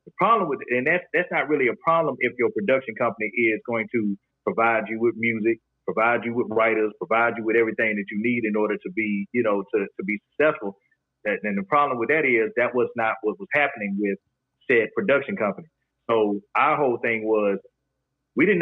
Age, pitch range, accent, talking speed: 30-49, 105-135 Hz, American, 215 wpm